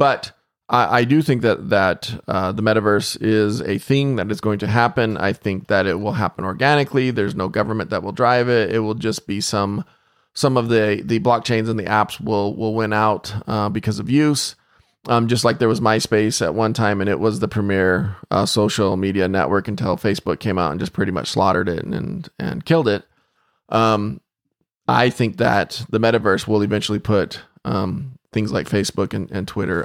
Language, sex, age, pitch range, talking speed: English, male, 20-39, 105-125 Hz, 205 wpm